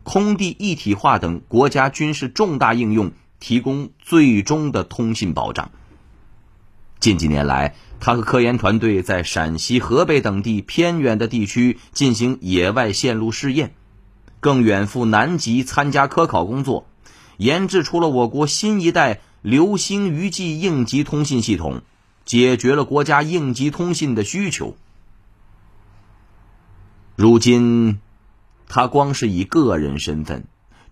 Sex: male